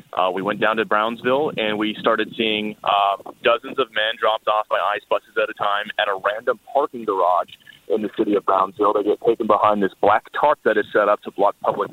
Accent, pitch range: American, 110-145 Hz